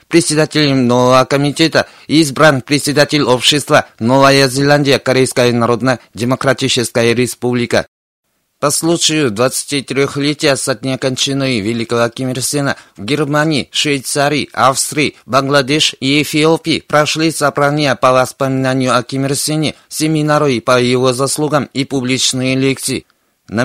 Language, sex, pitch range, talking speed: Russian, male, 130-150 Hz, 100 wpm